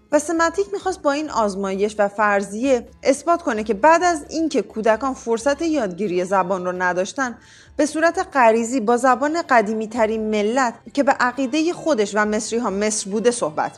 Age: 30-49